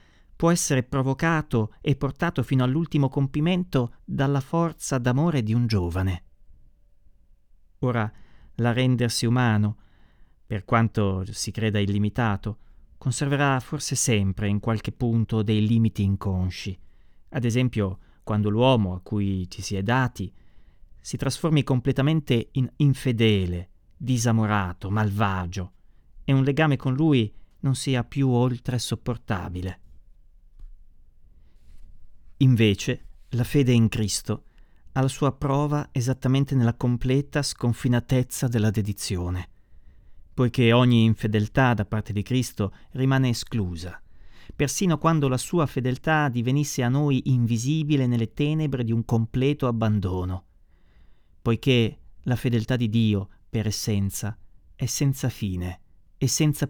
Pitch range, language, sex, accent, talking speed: 95-130 Hz, Italian, male, native, 115 wpm